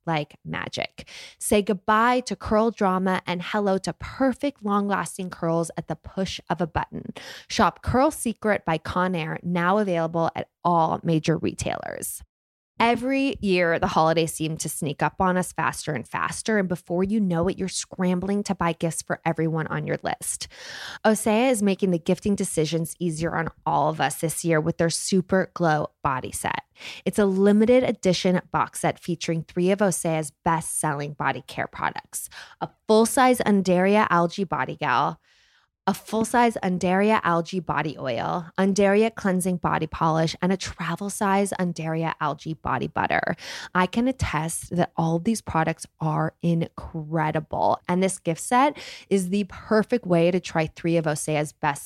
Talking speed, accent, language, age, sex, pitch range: 165 wpm, American, English, 20-39, female, 165-200 Hz